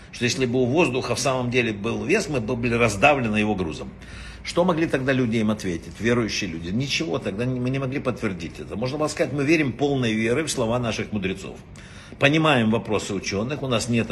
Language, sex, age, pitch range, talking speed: Russian, male, 60-79, 115-160 Hz, 210 wpm